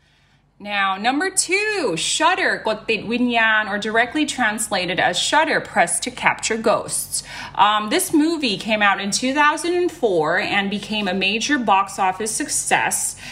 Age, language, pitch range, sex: 20-39, Thai, 185-240 Hz, female